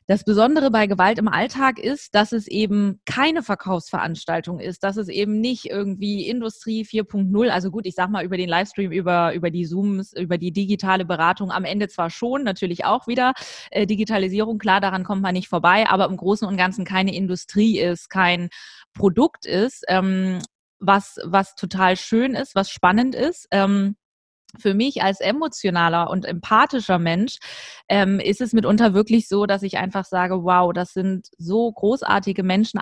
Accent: German